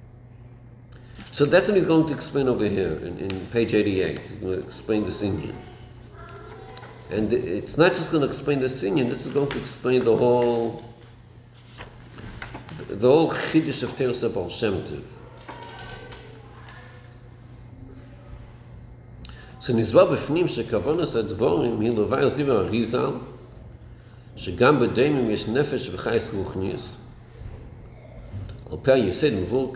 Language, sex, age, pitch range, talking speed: English, male, 50-69, 115-130 Hz, 115 wpm